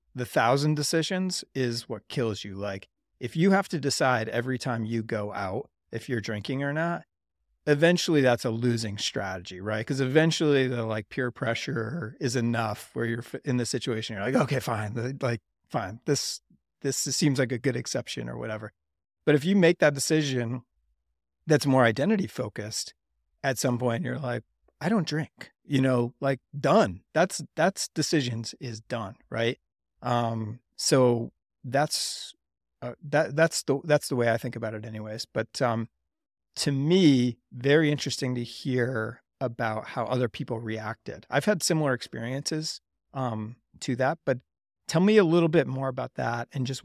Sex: male